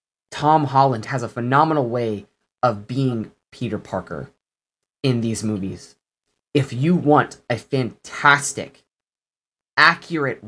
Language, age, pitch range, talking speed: English, 20-39, 120-155 Hz, 110 wpm